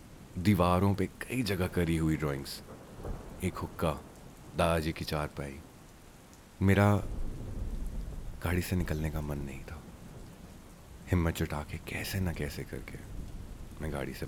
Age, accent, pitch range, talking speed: 30-49, Indian, 75-95 Hz, 125 wpm